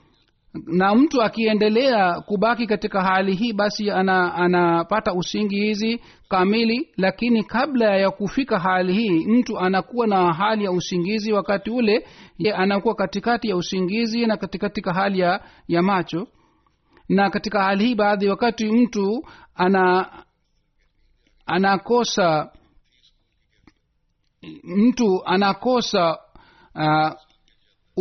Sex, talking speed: male, 105 wpm